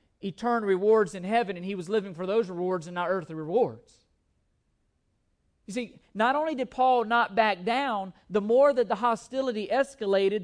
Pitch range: 210-260 Hz